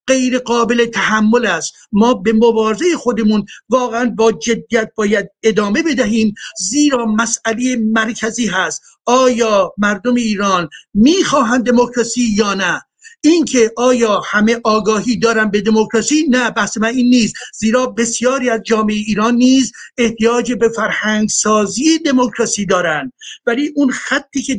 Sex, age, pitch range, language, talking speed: male, 50-69, 215-255 Hz, Persian, 125 wpm